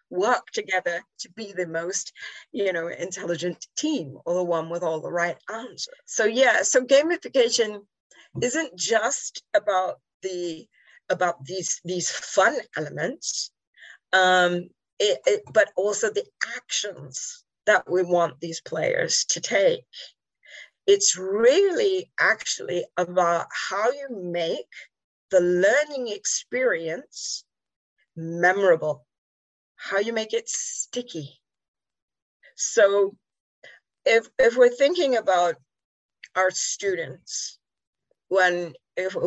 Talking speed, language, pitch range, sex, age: 110 wpm, English, 175-280 Hz, female, 40-59